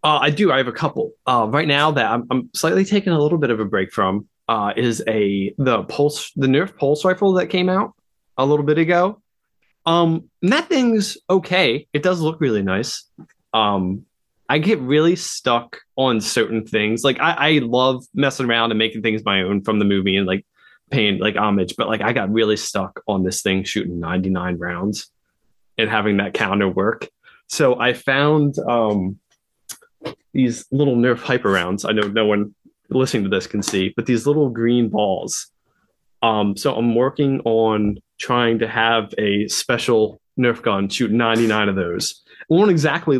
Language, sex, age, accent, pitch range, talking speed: English, male, 20-39, American, 110-145 Hz, 190 wpm